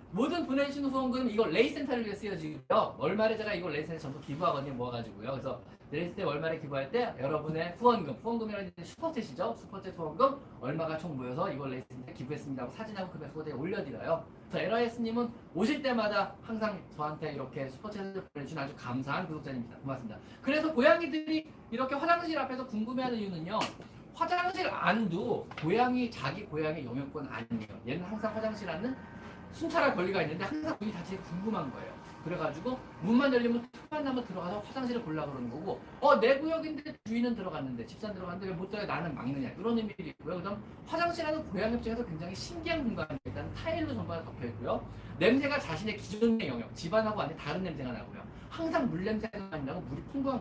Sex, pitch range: male, 150-240 Hz